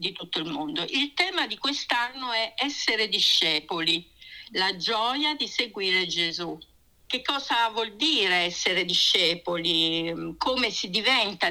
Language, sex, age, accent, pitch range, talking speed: Italian, female, 50-69, native, 180-280 Hz, 130 wpm